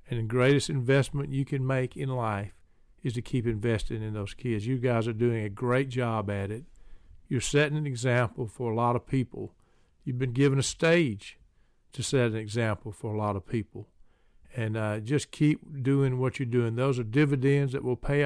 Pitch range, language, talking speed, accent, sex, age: 115-135 Hz, English, 205 wpm, American, male, 50-69